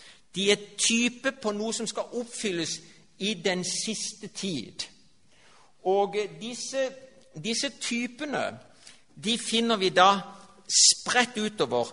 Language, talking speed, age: Danish, 110 wpm, 50-69